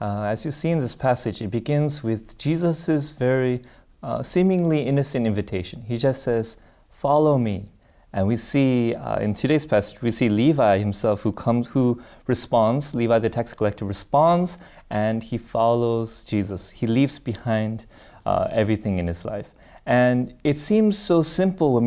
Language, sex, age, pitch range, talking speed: English, male, 30-49, 110-145 Hz, 160 wpm